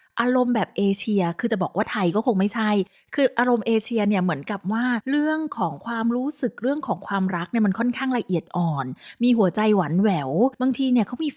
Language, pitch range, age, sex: Thai, 195-255 Hz, 20-39, female